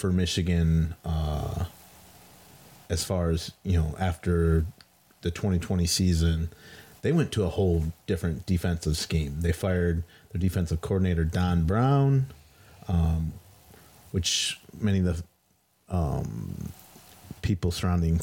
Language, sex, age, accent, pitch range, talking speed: English, male, 30-49, American, 85-95 Hz, 115 wpm